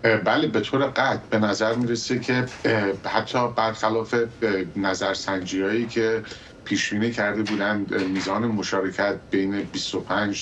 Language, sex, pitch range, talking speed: Persian, male, 95-115 Hz, 125 wpm